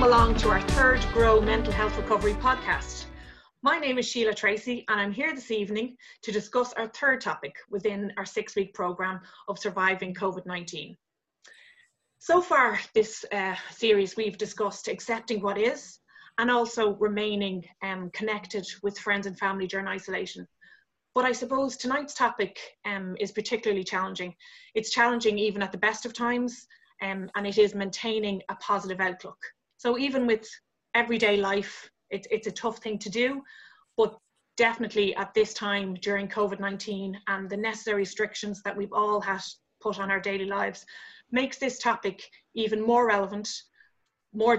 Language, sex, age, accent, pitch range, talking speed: English, female, 20-39, Irish, 200-235 Hz, 155 wpm